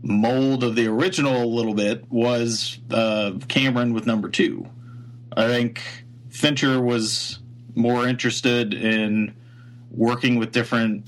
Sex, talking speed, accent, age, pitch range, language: male, 125 wpm, American, 40-59, 105-120 Hz, English